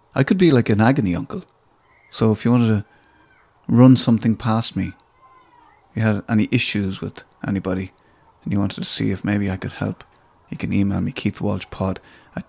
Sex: male